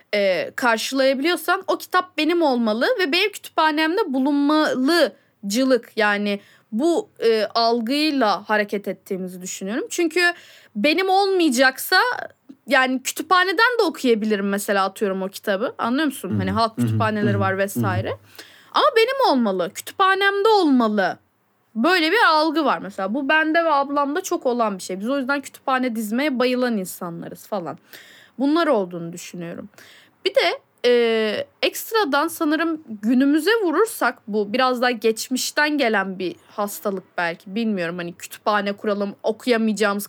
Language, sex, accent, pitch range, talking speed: Turkish, female, native, 210-320 Hz, 125 wpm